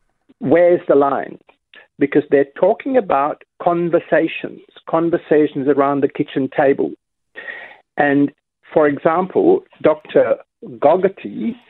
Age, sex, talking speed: 50-69, male, 90 wpm